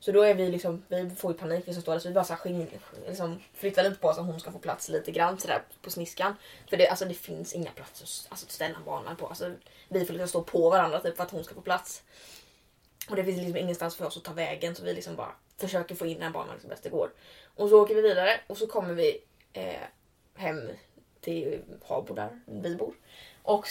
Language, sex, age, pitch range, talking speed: Swedish, female, 20-39, 170-215 Hz, 250 wpm